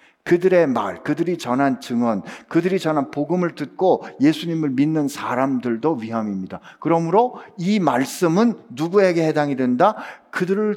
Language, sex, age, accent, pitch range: Korean, male, 50-69, native, 165-245 Hz